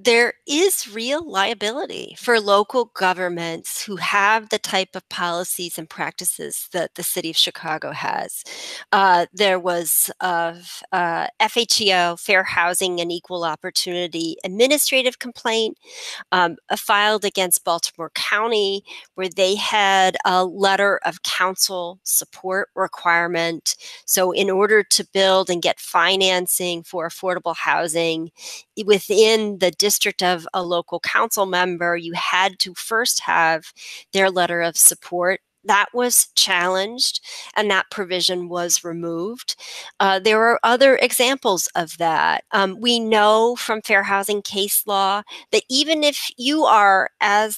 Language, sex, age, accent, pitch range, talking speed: English, female, 40-59, American, 180-220 Hz, 130 wpm